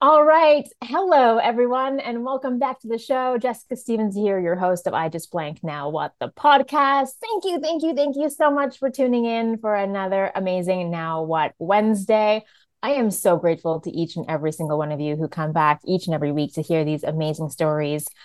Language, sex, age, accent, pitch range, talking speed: English, female, 20-39, American, 160-230 Hz, 210 wpm